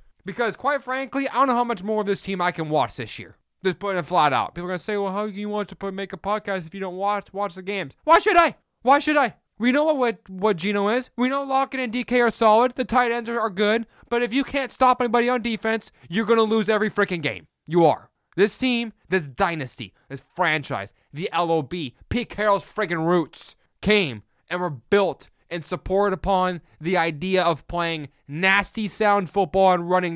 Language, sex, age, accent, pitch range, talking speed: English, male, 20-39, American, 140-205 Hz, 225 wpm